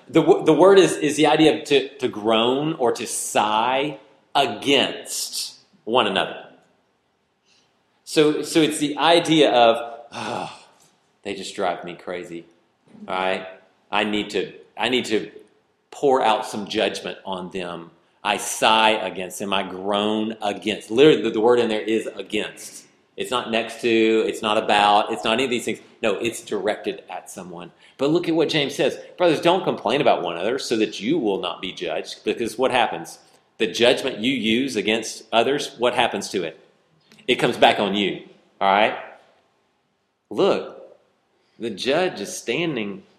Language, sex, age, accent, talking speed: English, male, 40-59, American, 165 wpm